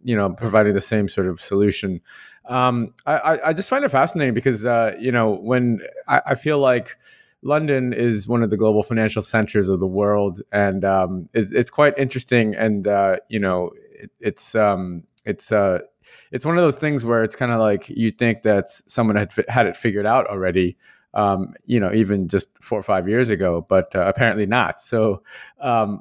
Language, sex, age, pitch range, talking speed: English, male, 30-49, 100-120 Hz, 200 wpm